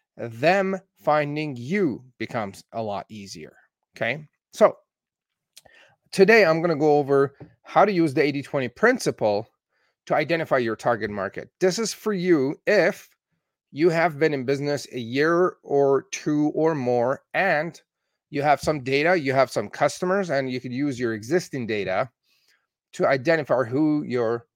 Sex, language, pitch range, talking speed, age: male, English, 120-165 Hz, 150 wpm, 30-49